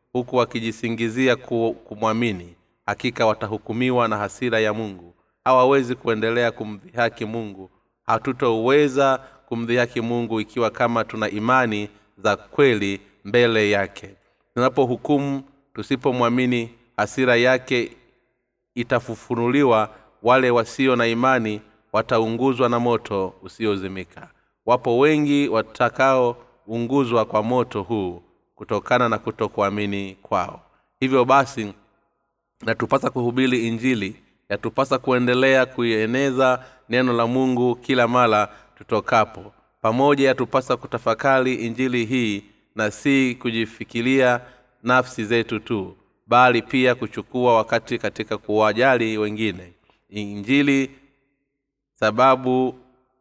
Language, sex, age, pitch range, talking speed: Swahili, male, 30-49, 110-130 Hz, 90 wpm